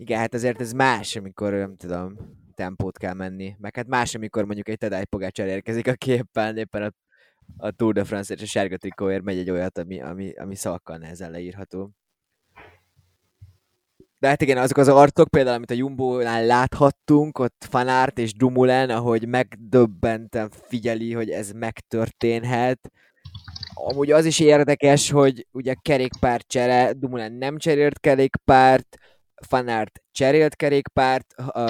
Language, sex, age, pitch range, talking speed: Hungarian, male, 20-39, 105-125 Hz, 140 wpm